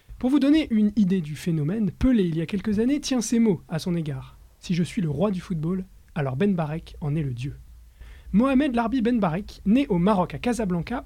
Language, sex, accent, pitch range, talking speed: French, male, French, 155-220 Hz, 230 wpm